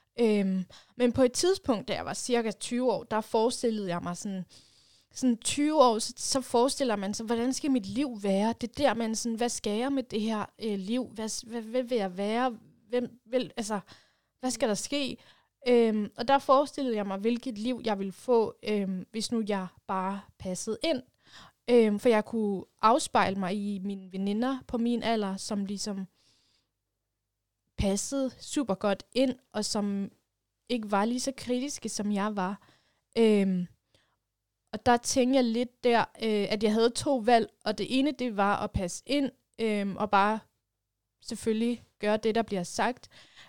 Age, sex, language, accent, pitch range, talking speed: 20-39, female, Danish, native, 200-245 Hz, 175 wpm